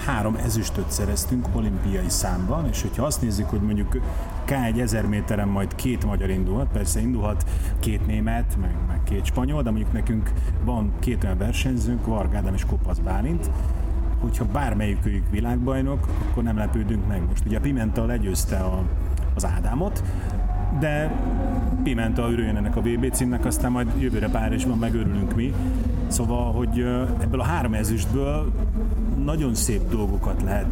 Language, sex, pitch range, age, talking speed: Hungarian, male, 85-115 Hz, 30-49, 150 wpm